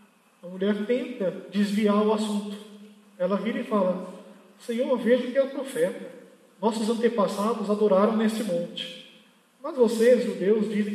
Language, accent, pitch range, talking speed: Portuguese, Brazilian, 190-230 Hz, 140 wpm